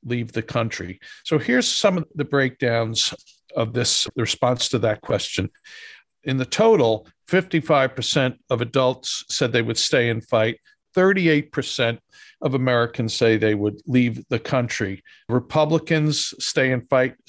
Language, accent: English, American